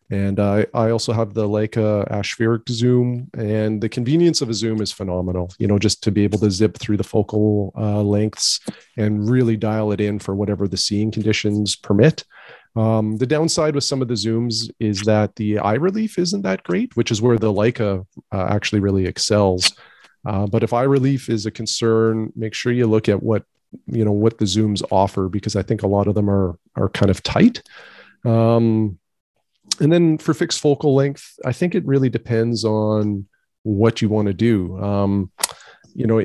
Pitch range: 105-120 Hz